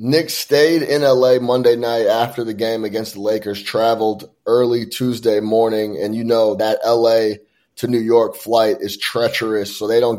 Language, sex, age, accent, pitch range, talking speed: English, male, 20-39, American, 115-140 Hz, 175 wpm